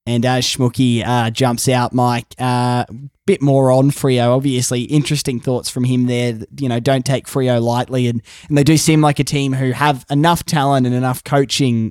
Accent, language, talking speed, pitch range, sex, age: Australian, English, 205 wpm, 120-155 Hz, male, 20-39